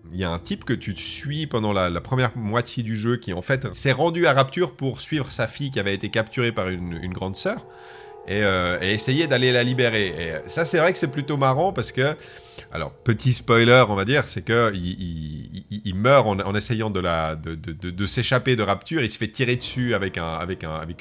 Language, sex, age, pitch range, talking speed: French, male, 30-49, 100-135 Hz, 250 wpm